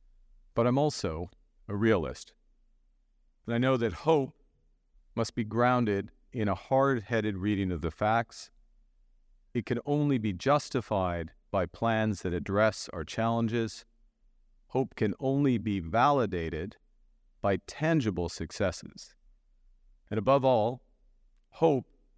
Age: 40-59